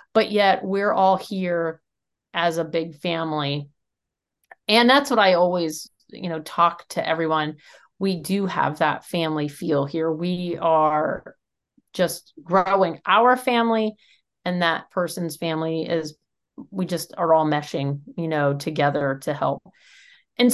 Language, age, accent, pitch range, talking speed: English, 40-59, American, 165-220 Hz, 140 wpm